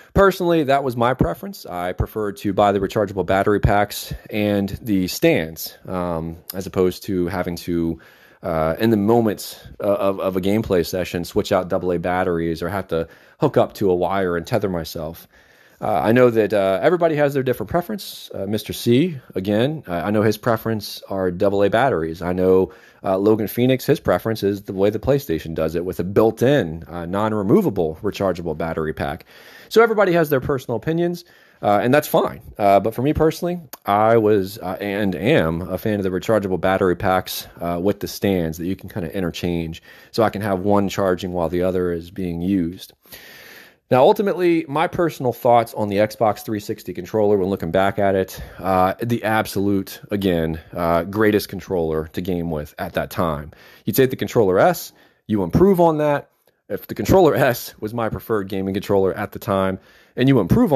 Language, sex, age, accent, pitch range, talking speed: English, male, 30-49, American, 90-115 Hz, 190 wpm